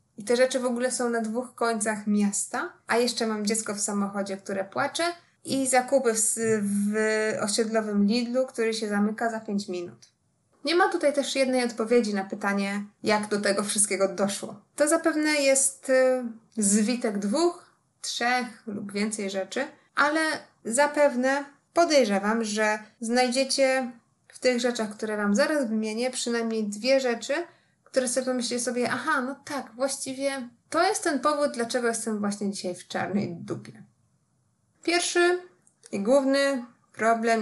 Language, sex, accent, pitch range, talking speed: Polish, female, native, 210-270 Hz, 145 wpm